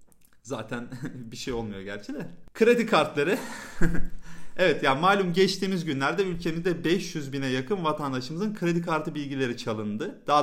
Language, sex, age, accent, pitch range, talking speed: Turkish, male, 40-59, native, 135-200 Hz, 140 wpm